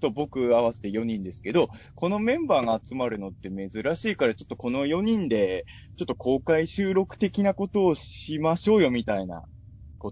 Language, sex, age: Japanese, male, 20-39